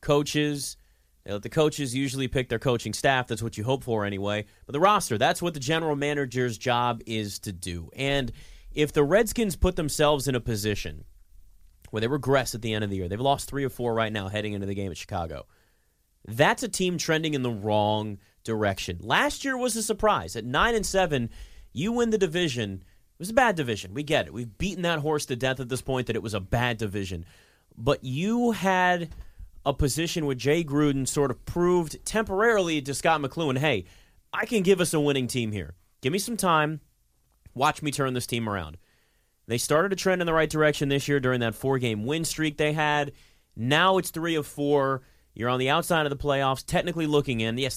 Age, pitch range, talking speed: 30-49, 110-155 Hz, 215 wpm